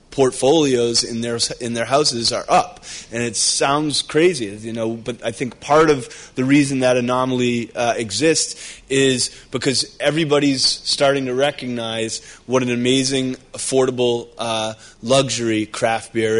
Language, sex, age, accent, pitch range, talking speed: English, male, 20-39, American, 115-130 Hz, 145 wpm